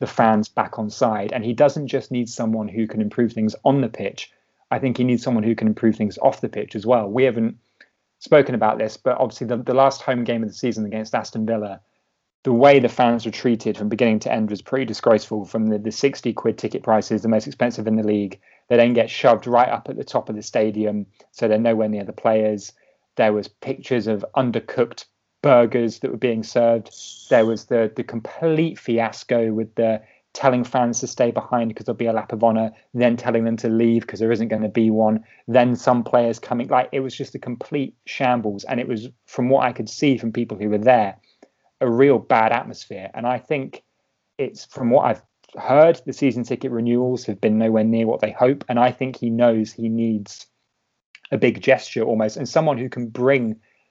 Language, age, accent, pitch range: English, 30-49, British, 110-125 Hz